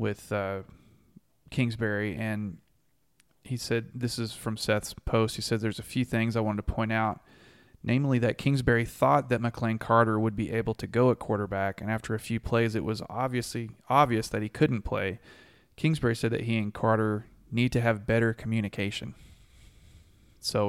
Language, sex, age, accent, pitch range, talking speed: English, male, 30-49, American, 105-125 Hz, 175 wpm